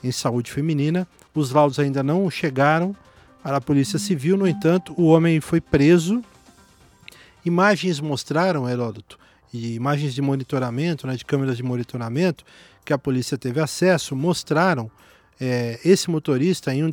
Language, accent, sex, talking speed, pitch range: Portuguese, Brazilian, male, 145 wpm, 130-175 Hz